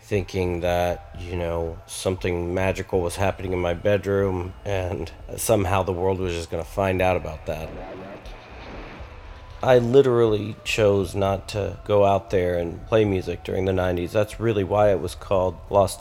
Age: 40-59